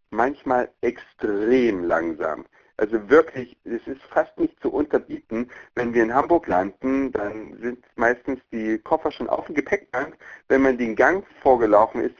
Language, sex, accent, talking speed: German, male, German, 150 wpm